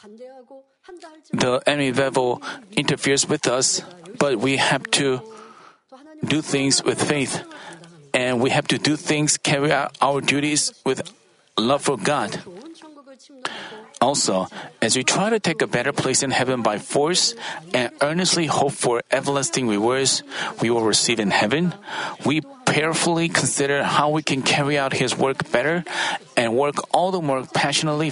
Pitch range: 130-175 Hz